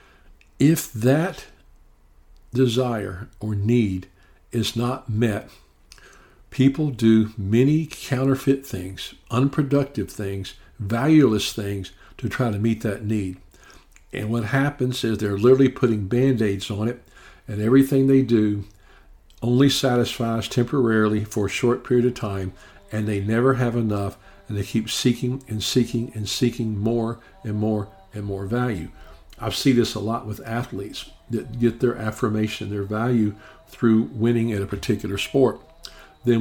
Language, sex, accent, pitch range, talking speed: English, male, American, 100-125 Hz, 140 wpm